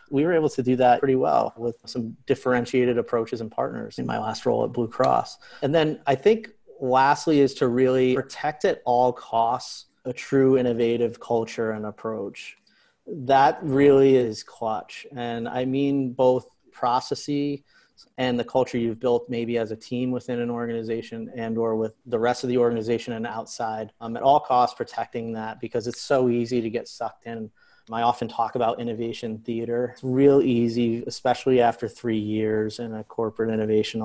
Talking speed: 180 wpm